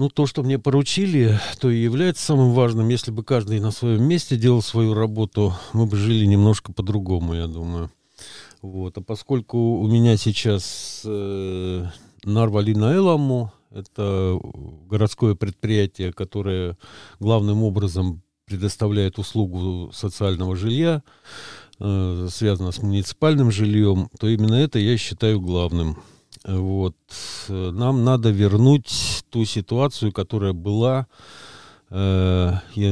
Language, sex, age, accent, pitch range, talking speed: Russian, male, 50-69, native, 95-120 Hz, 115 wpm